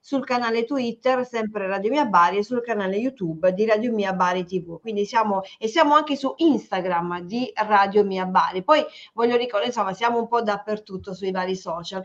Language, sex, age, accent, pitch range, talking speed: Italian, female, 40-59, native, 195-250 Hz, 190 wpm